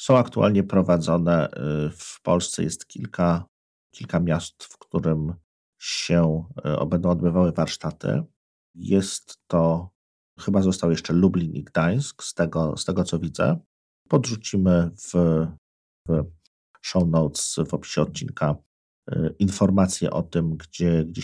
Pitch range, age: 80-95 Hz, 50-69